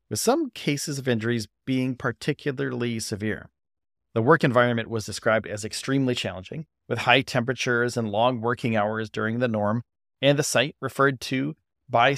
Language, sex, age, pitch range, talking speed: English, male, 40-59, 115-140 Hz, 160 wpm